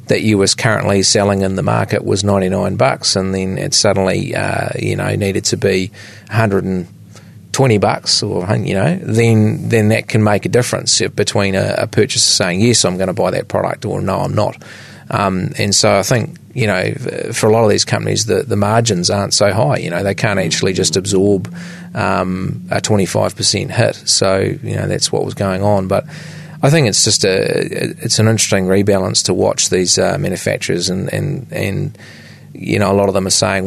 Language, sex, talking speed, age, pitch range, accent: English, male, 210 wpm, 30-49, 95-115 Hz, Australian